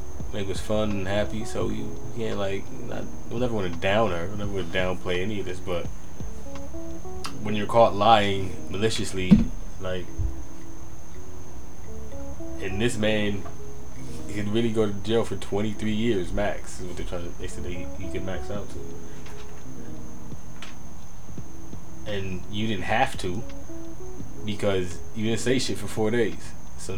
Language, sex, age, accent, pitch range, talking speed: English, male, 20-39, American, 90-110 Hz, 160 wpm